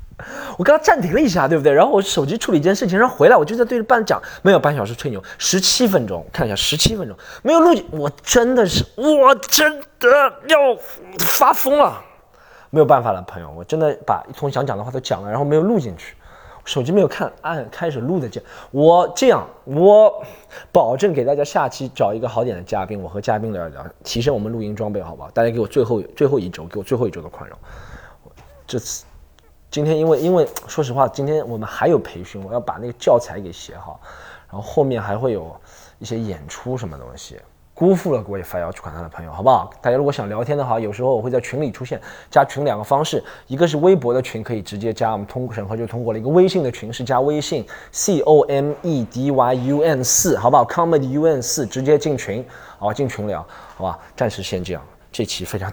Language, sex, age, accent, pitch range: Chinese, male, 20-39, native, 110-175 Hz